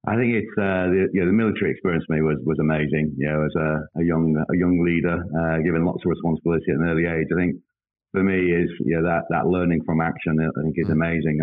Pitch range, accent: 80-90 Hz, British